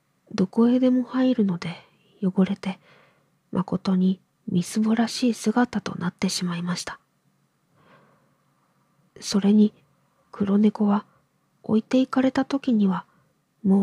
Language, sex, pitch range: Japanese, female, 185-220 Hz